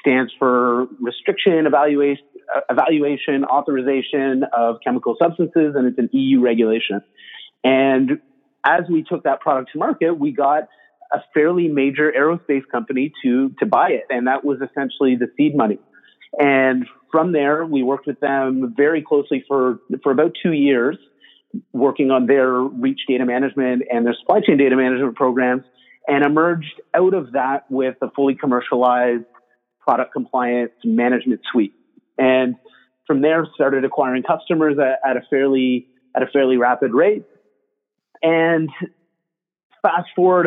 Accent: American